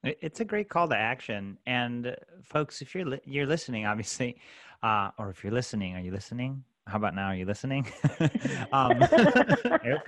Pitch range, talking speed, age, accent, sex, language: 100-135 Hz, 185 wpm, 30-49, American, male, English